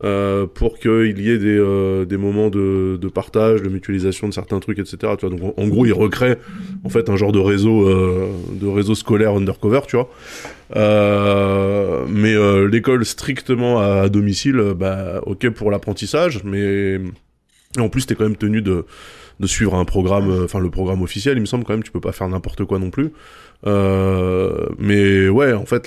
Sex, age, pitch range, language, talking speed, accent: male, 20-39, 95-110 Hz, French, 200 wpm, French